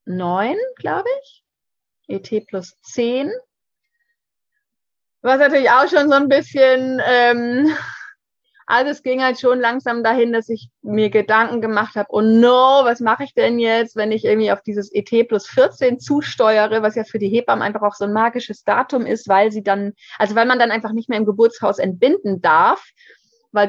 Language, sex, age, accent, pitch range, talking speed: German, female, 30-49, German, 205-265 Hz, 175 wpm